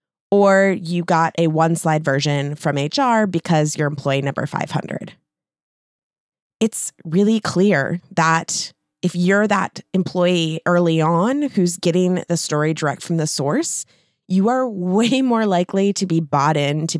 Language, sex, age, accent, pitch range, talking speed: English, female, 20-39, American, 150-180 Hz, 145 wpm